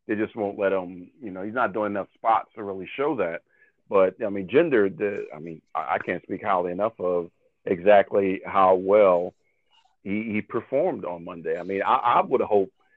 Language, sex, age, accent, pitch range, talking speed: English, male, 50-69, American, 95-110 Hz, 195 wpm